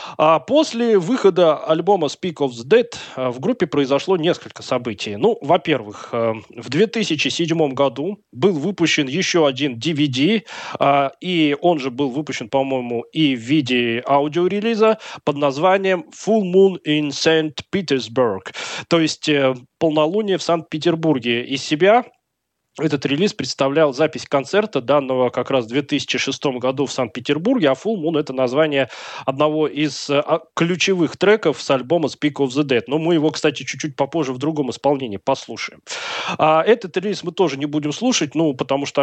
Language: Russian